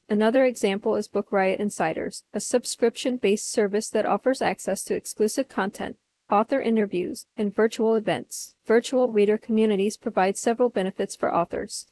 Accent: American